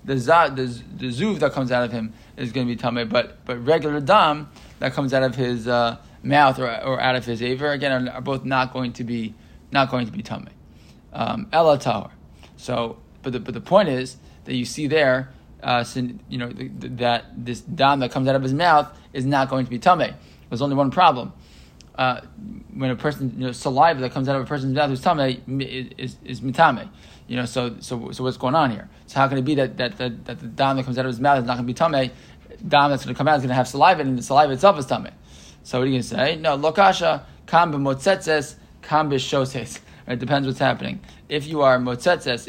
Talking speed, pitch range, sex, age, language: 250 wpm, 125-140 Hz, male, 20-39, English